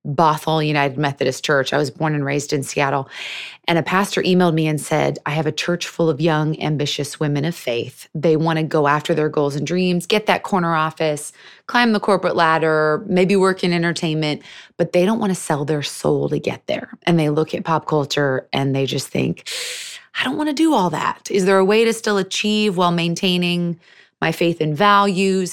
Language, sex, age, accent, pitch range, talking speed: English, female, 20-39, American, 150-185 Hz, 215 wpm